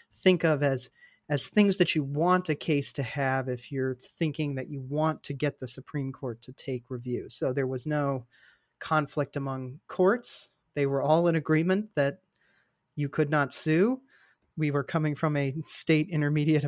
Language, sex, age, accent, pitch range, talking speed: English, male, 30-49, American, 140-175 Hz, 180 wpm